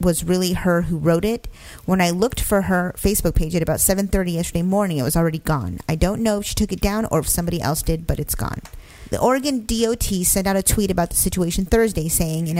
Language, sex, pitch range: English, female, 160-195 Hz